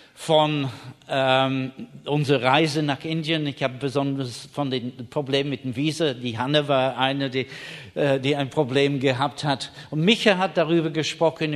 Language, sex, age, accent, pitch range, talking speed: German, male, 60-79, German, 130-150 Hz, 160 wpm